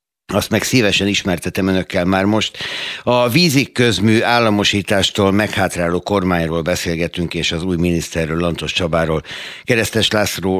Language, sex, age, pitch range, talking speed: Hungarian, male, 60-79, 85-105 Hz, 125 wpm